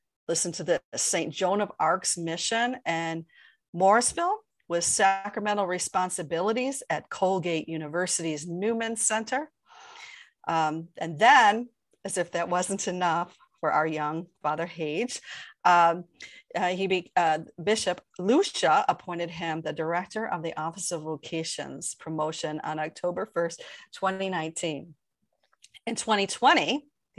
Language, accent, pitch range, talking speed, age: English, American, 165-230 Hz, 120 wpm, 40-59